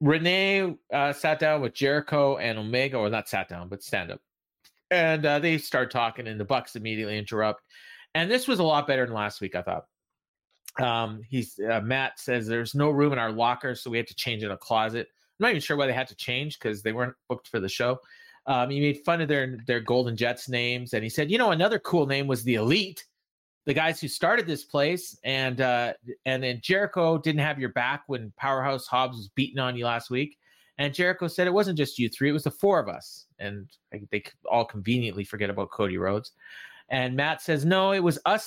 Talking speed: 225 wpm